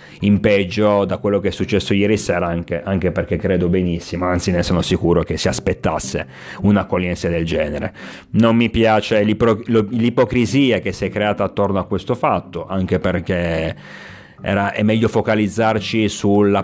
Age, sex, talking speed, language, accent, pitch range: 30-49, male, 150 wpm, Italian, native, 90-105 Hz